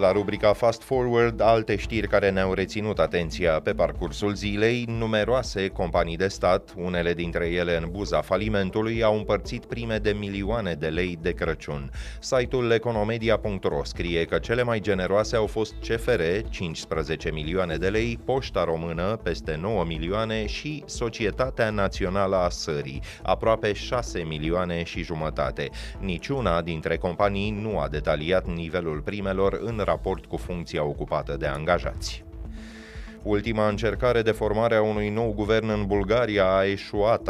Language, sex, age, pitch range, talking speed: Romanian, male, 30-49, 85-110 Hz, 140 wpm